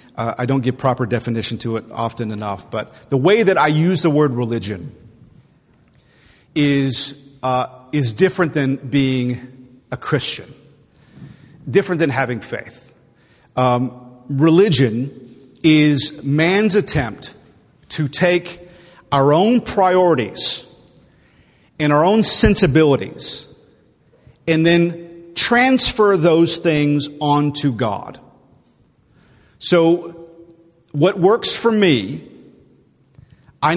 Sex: male